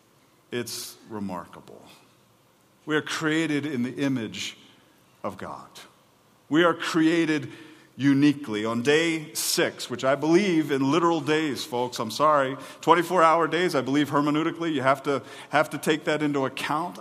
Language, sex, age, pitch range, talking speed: English, male, 40-59, 140-180 Hz, 140 wpm